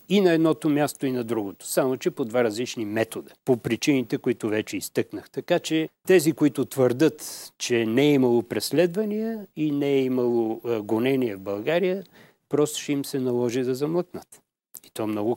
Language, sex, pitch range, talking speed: Bulgarian, male, 115-155 Hz, 180 wpm